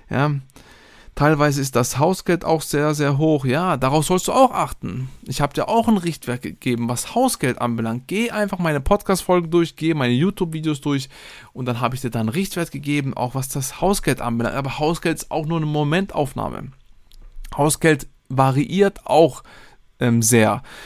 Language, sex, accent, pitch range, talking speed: German, male, German, 125-160 Hz, 175 wpm